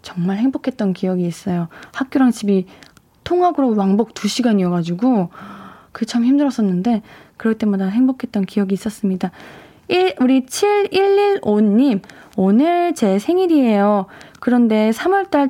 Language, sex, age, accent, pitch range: Korean, female, 20-39, native, 225-320 Hz